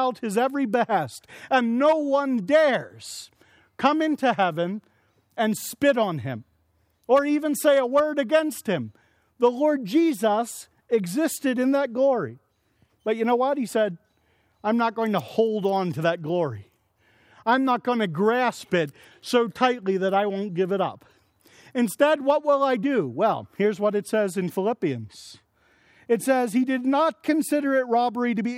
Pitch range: 190-260 Hz